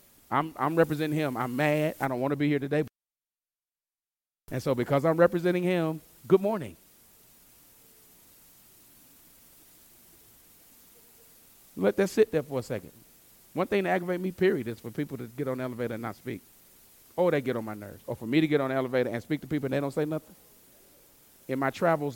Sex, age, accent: male, 30-49, American